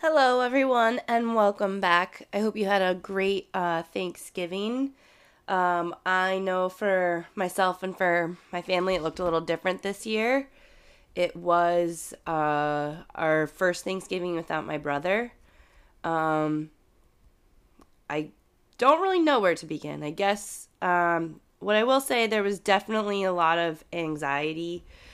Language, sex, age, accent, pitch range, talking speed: English, female, 20-39, American, 155-190 Hz, 145 wpm